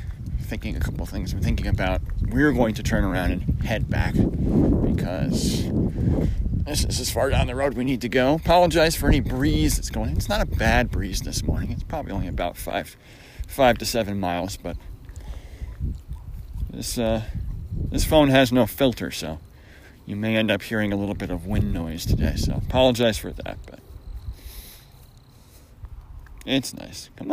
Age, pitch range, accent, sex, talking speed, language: 40-59, 85-125 Hz, American, male, 175 wpm, English